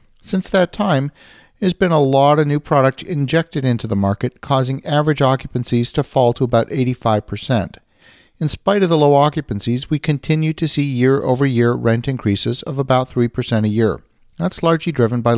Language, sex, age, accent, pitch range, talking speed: English, male, 40-59, American, 120-155 Hz, 170 wpm